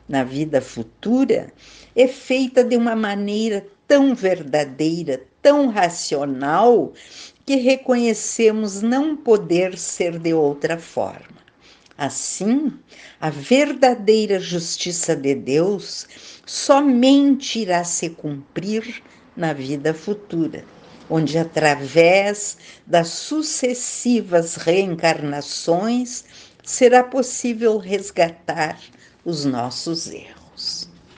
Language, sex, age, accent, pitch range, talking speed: Portuguese, female, 60-79, Brazilian, 155-225 Hz, 85 wpm